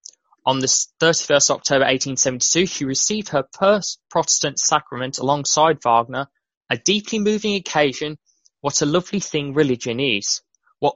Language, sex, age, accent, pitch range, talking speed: English, male, 10-29, British, 130-160 Hz, 130 wpm